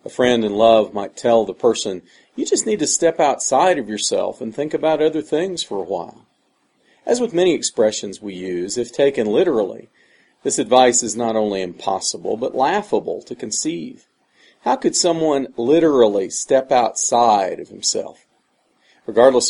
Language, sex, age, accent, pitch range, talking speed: English, male, 40-59, American, 105-145 Hz, 160 wpm